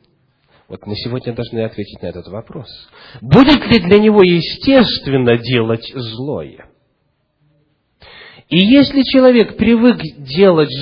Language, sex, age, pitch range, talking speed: English, male, 40-59, 130-205 Hz, 110 wpm